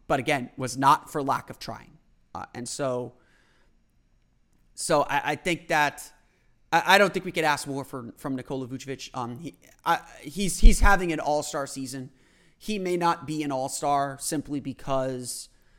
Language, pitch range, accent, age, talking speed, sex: English, 130-165 Hz, American, 30-49, 180 wpm, male